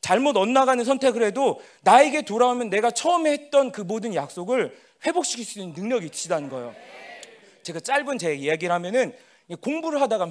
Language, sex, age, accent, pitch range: Korean, male, 40-59, native, 185-275 Hz